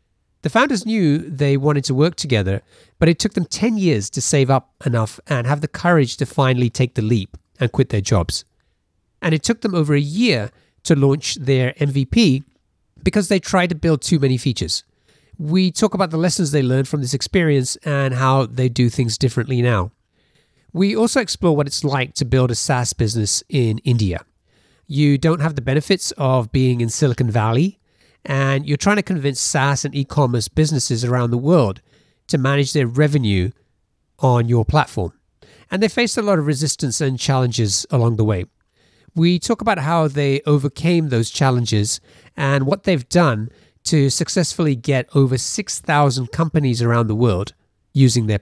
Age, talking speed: 40-59, 180 wpm